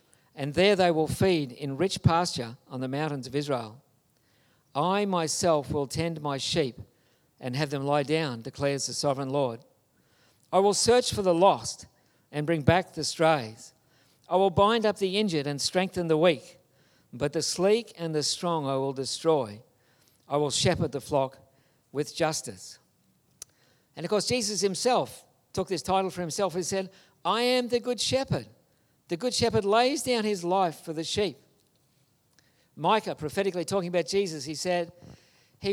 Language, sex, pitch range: English, male, 140-190 Hz